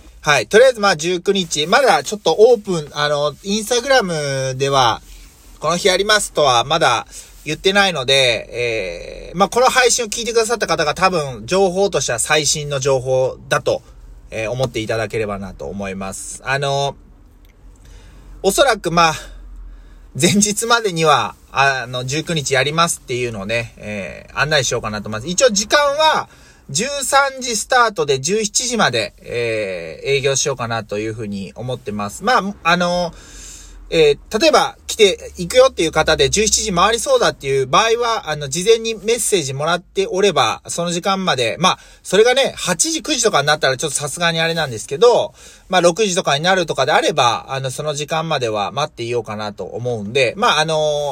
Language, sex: Japanese, male